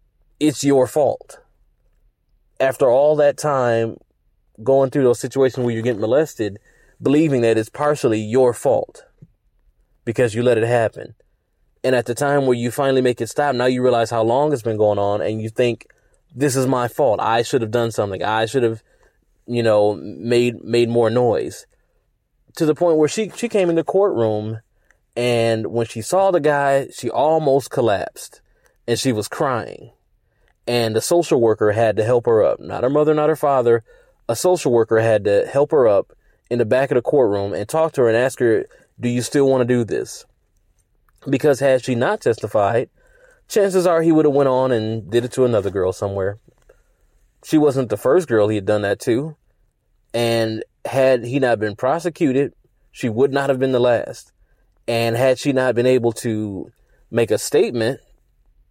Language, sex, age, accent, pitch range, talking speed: English, male, 20-39, American, 115-145 Hz, 190 wpm